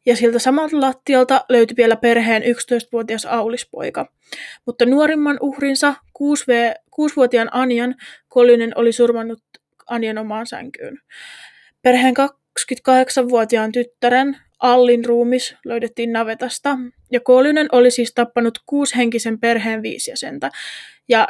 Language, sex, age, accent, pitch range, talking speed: Finnish, female, 20-39, native, 235-260 Hz, 105 wpm